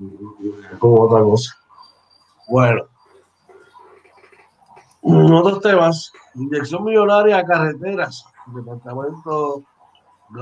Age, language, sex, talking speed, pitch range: 60-79, Spanish, male, 75 wpm, 125-150 Hz